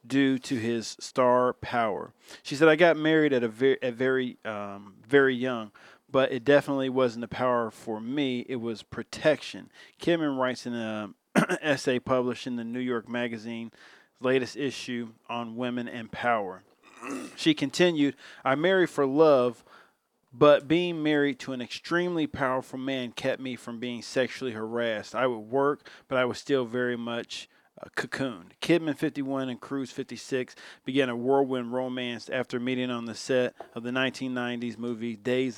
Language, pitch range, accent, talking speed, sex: English, 120-140 Hz, American, 160 wpm, male